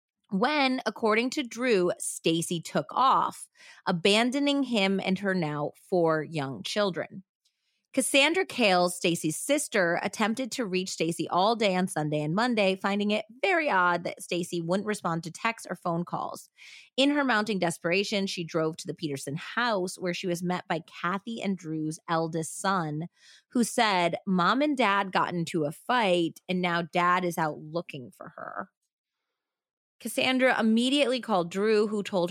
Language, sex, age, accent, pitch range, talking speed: English, female, 30-49, American, 170-220 Hz, 160 wpm